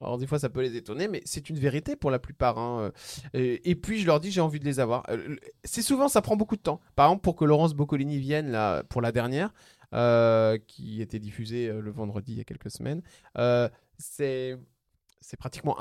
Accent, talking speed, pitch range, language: French, 230 wpm, 125-160 Hz, French